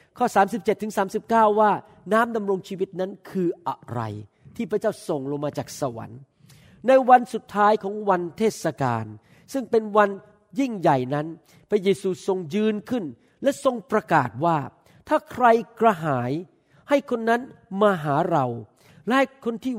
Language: Thai